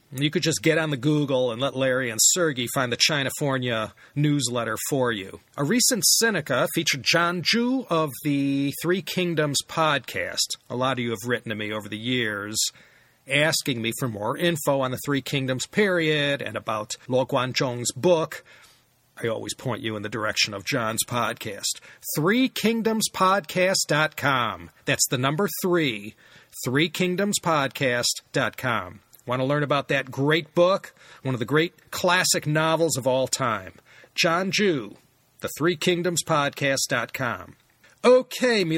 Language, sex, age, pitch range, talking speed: English, male, 40-59, 120-170 Hz, 145 wpm